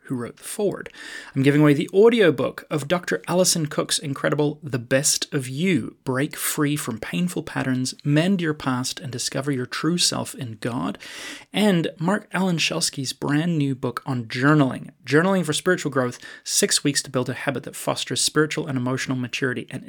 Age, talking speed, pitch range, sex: 30-49, 180 wpm, 130-165 Hz, male